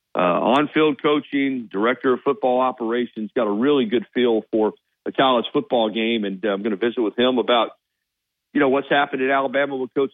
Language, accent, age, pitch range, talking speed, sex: English, American, 50-69, 110-140 Hz, 200 wpm, male